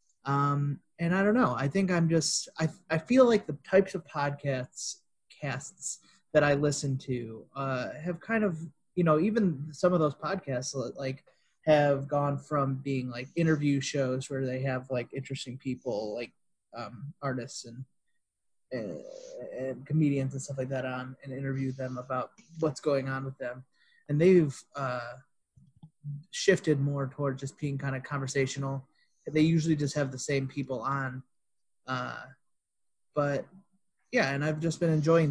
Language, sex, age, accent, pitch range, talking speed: English, male, 30-49, American, 130-155 Hz, 160 wpm